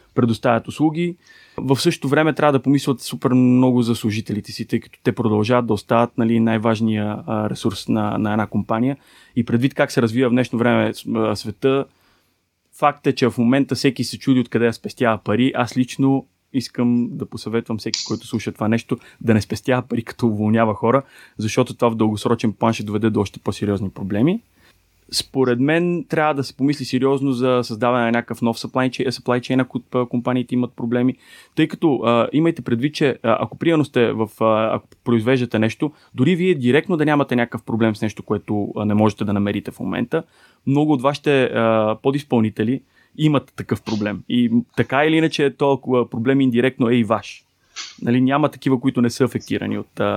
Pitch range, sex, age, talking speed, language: 115-135 Hz, male, 20-39, 180 wpm, Bulgarian